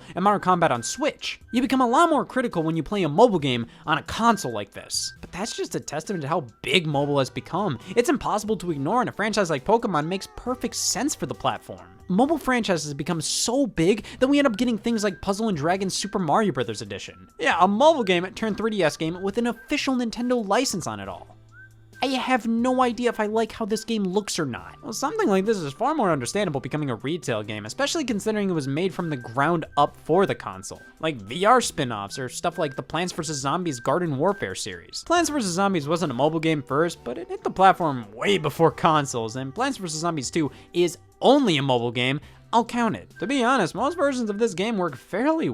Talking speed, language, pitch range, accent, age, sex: 225 wpm, English, 145-235 Hz, American, 20-39, male